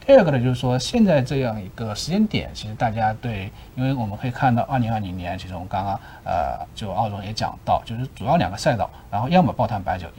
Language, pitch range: Chinese, 105-160 Hz